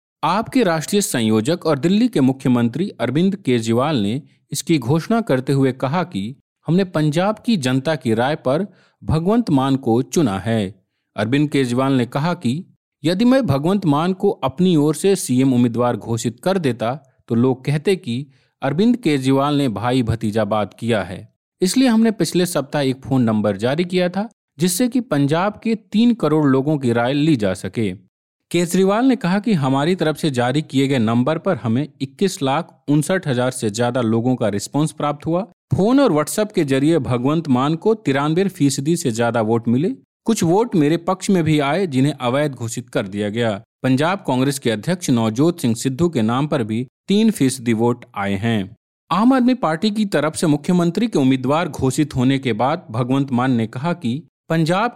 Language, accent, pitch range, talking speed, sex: Hindi, native, 125-175 Hz, 180 wpm, male